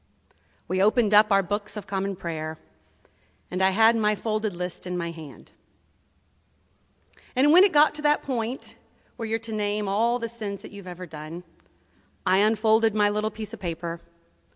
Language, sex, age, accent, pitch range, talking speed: English, female, 30-49, American, 155-235 Hz, 175 wpm